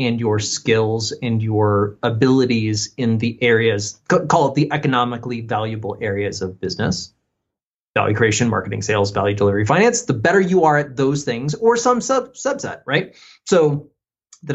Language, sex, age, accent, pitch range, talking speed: English, male, 30-49, American, 110-145 Hz, 155 wpm